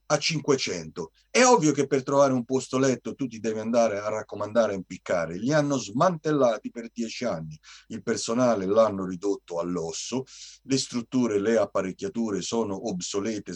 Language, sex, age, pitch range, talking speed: Italian, male, 40-59, 95-135 Hz, 150 wpm